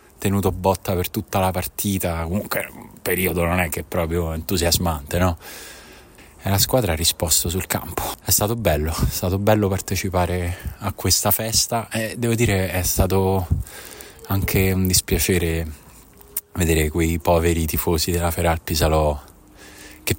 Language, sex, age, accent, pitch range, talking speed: Italian, male, 20-39, native, 80-95 Hz, 145 wpm